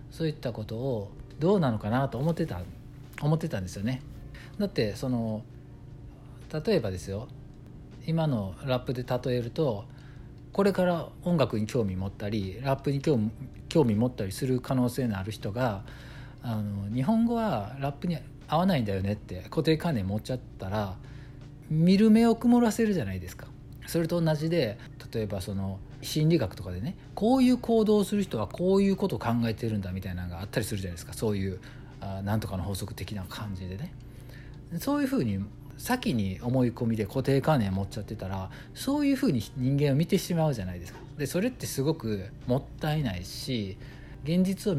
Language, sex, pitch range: Japanese, male, 105-145 Hz